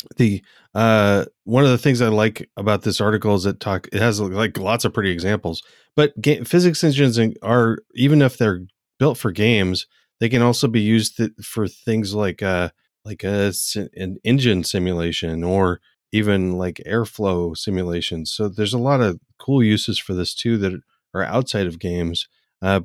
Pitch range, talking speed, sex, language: 95-120 Hz, 175 wpm, male, English